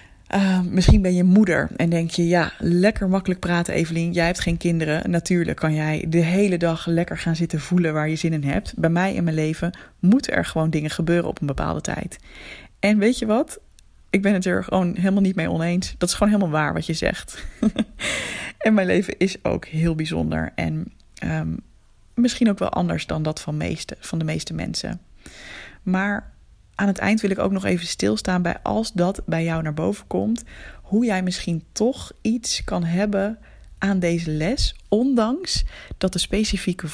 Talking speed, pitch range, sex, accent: 190 wpm, 160-200 Hz, female, Dutch